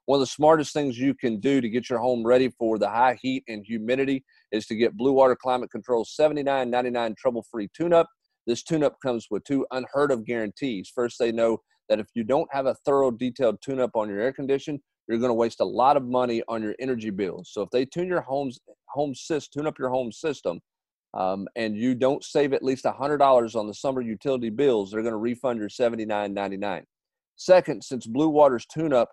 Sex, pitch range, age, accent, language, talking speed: male, 115-140 Hz, 40-59, American, English, 200 wpm